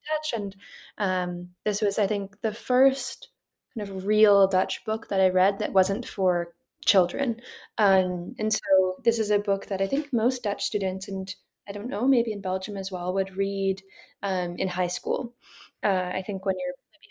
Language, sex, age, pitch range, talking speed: English, female, 10-29, 190-230 Hz, 195 wpm